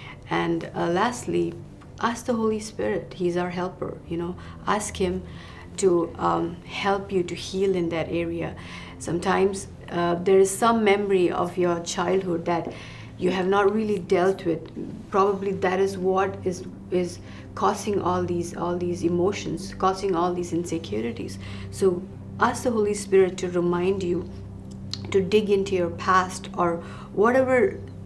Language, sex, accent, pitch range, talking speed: English, female, Indian, 160-190 Hz, 150 wpm